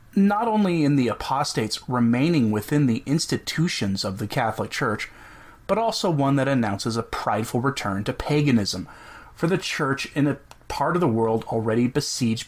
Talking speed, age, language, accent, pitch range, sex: 165 wpm, 30-49, English, American, 110-140 Hz, male